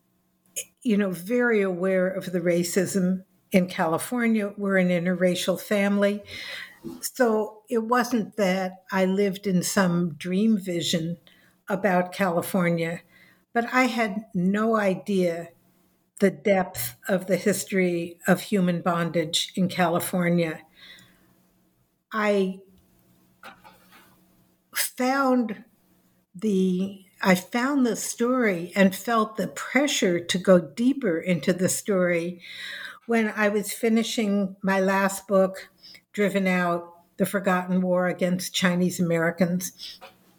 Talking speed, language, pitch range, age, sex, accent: 105 wpm, English, 180-210 Hz, 60-79, female, American